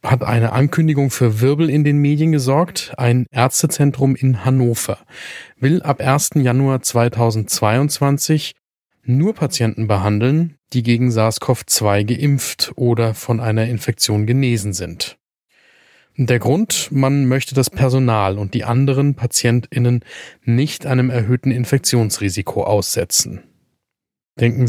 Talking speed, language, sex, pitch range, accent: 115 wpm, German, male, 115-140 Hz, German